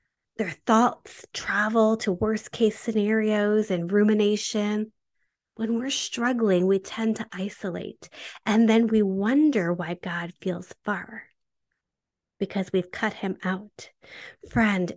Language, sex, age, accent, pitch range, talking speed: English, female, 30-49, American, 205-265 Hz, 120 wpm